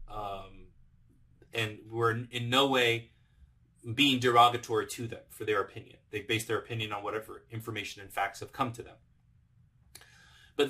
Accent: American